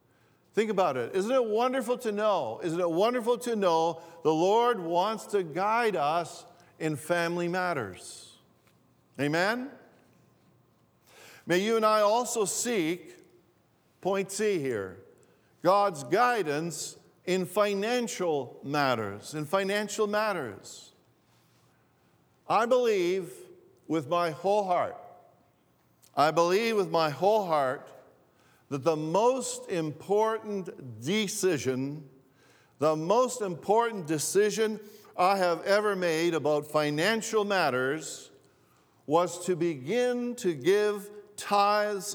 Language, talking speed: English, 105 wpm